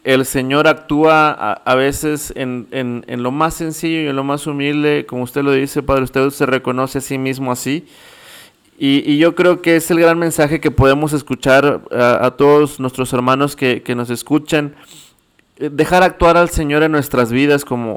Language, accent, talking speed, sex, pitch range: Spanish, Mexican, 195 wpm, male, 130-155 Hz